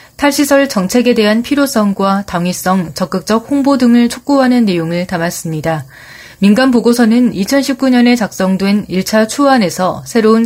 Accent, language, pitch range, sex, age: native, Korean, 175-225 Hz, female, 30-49